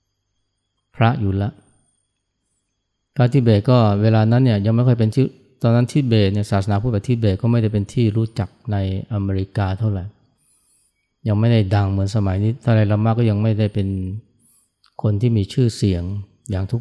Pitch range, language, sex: 100-115 Hz, Thai, male